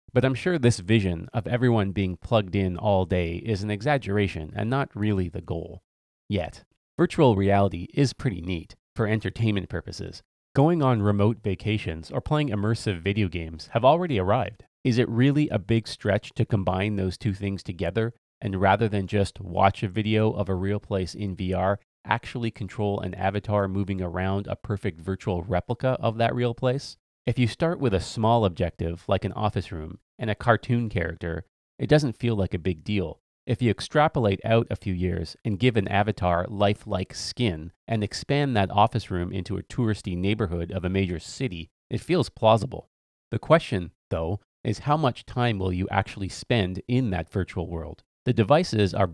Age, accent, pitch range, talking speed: 30-49, American, 95-115 Hz, 180 wpm